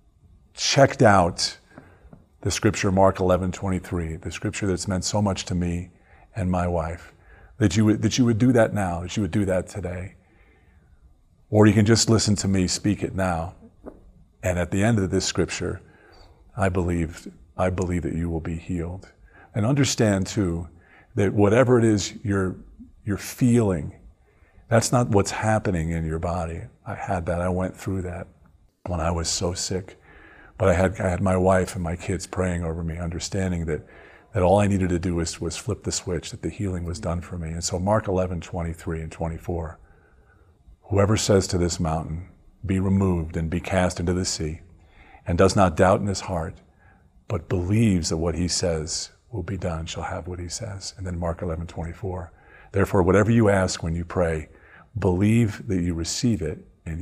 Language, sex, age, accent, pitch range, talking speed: English, male, 40-59, American, 85-100 Hz, 195 wpm